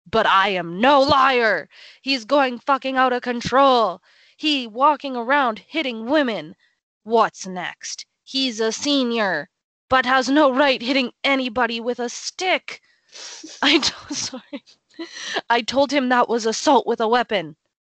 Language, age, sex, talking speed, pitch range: English, 20-39, female, 135 wpm, 205-275 Hz